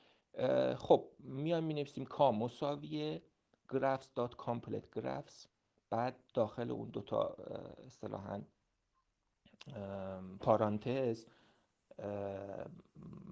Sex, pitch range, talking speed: male, 110-150 Hz, 70 wpm